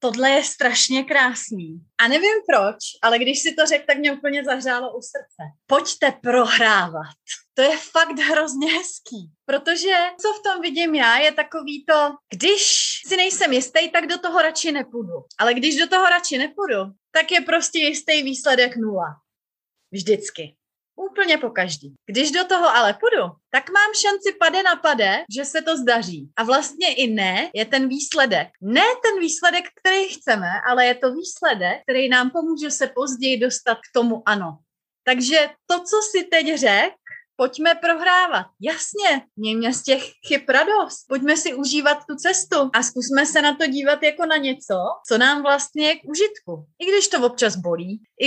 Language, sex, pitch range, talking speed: Czech, female, 235-320 Hz, 175 wpm